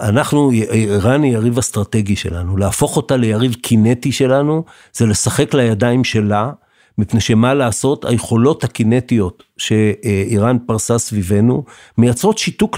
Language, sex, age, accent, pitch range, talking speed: Hebrew, male, 50-69, native, 120-150 Hz, 115 wpm